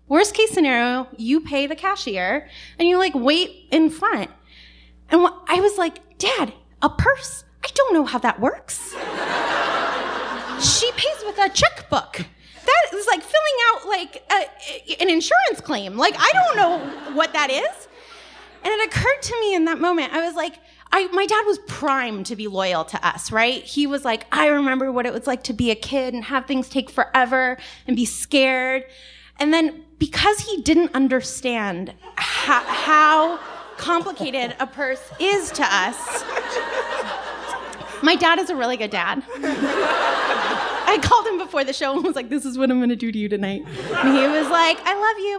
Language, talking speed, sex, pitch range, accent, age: English, 180 wpm, female, 260-360 Hz, American, 20-39